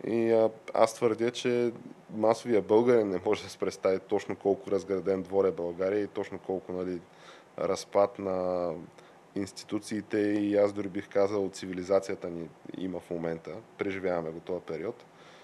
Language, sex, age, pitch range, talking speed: Bulgarian, male, 20-39, 95-110 Hz, 150 wpm